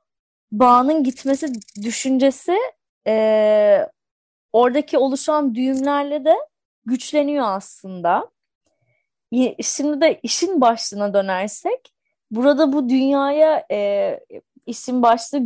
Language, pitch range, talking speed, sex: Turkish, 210-285 Hz, 80 wpm, female